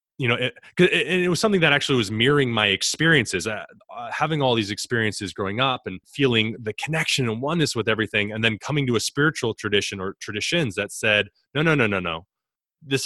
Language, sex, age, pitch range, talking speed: English, male, 20-39, 105-135 Hz, 205 wpm